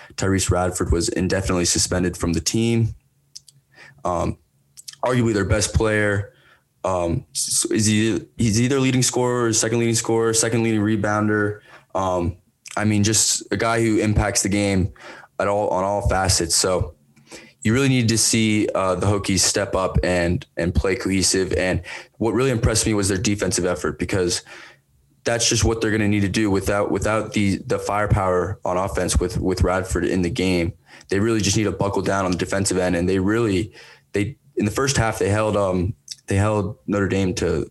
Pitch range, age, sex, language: 95-110 Hz, 20-39, male, English